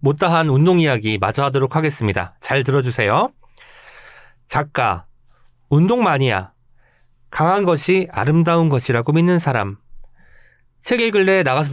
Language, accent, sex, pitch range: Korean, native, male, 120-175 Hz